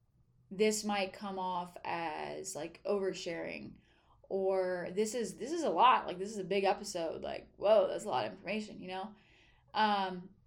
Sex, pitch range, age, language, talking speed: female, 185-220 Hz, 20-39, English, 170 wpm